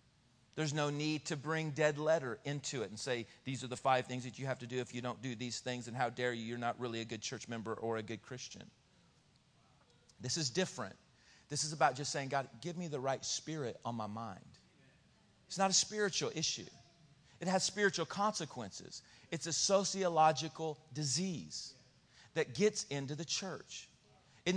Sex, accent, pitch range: male, American, 130-190 Hz